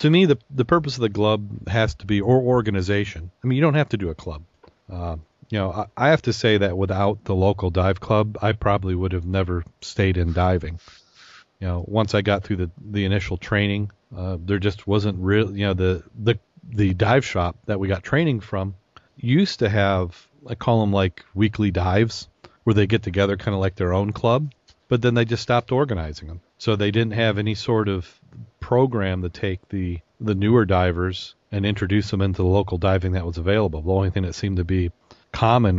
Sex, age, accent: male, 40-59, American